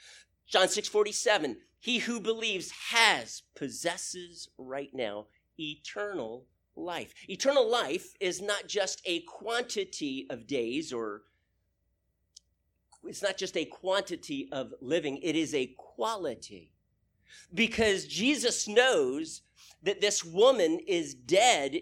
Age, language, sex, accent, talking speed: 40-59, English, male, American, 115 wpm